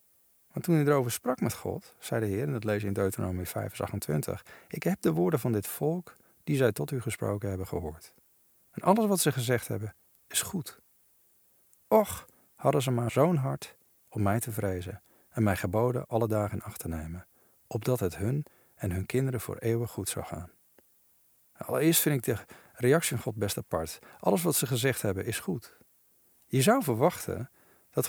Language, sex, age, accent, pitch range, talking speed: Dutch, male, 50-69, Dutch, 100-130 Hz, 190 wpm